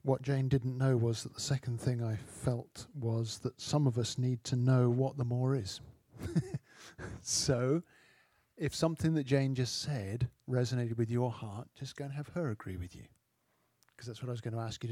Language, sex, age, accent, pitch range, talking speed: English, male, 50-69, British, 120-135 Hz, 205 wpm